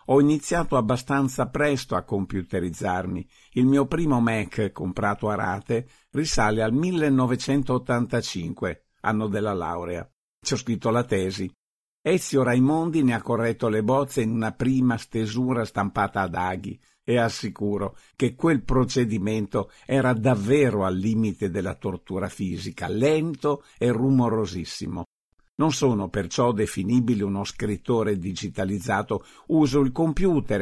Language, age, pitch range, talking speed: Italian, 50-69, 100-135 Hz, 125 wpm